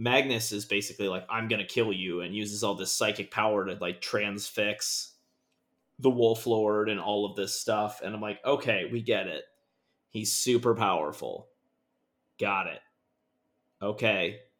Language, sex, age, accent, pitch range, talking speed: English, male, 30-49, American, 100-130 Hz, 155 wpm